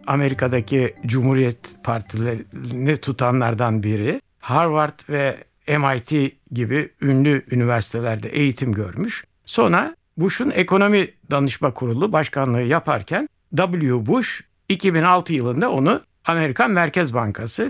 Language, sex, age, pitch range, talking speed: Turkish, male, 60-79, 125-180 Hz, 95 wpm